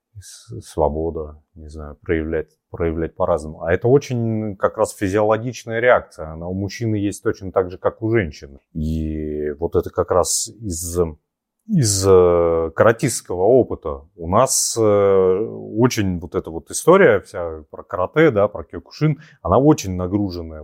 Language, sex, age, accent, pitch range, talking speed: Russian, male, 30-49, native, 85-115 Hz, 140 wpm